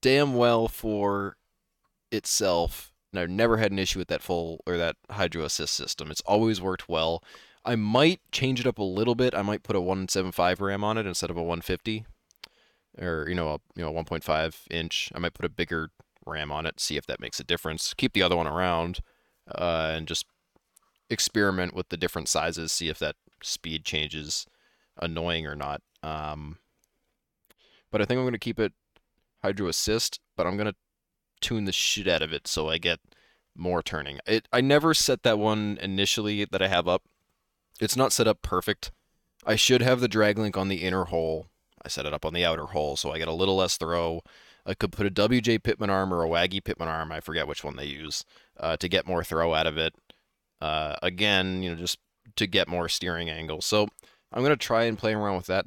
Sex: male